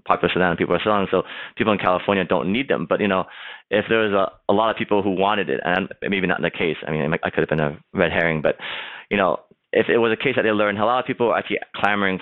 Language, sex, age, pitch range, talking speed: English, male, 30-49, 90-100 Hz, 290 wpm